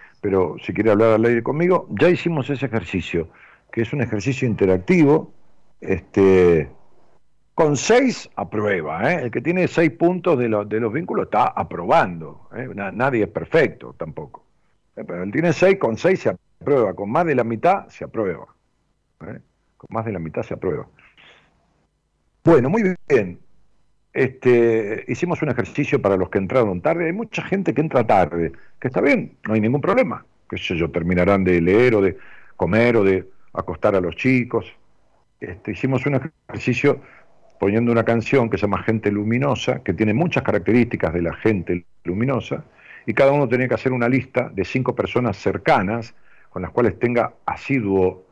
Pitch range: 100-140 Hz